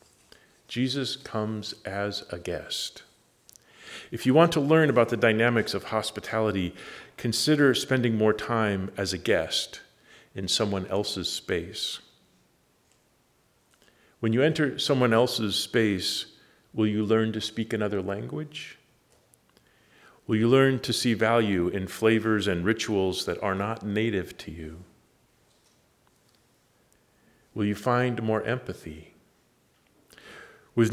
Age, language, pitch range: 50-69, English, 100-120 Hz